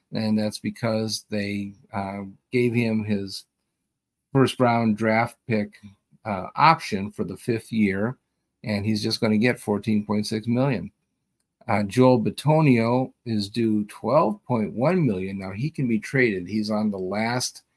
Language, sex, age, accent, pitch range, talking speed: English, male, 50-69, American, 105-125 Hz, 140 wpm